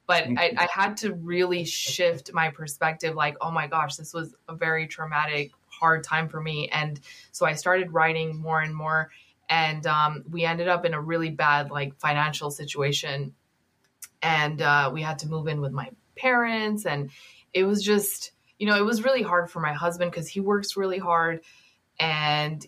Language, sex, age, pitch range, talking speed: English, female, 20-39, 150-170 Hz, 190 wpm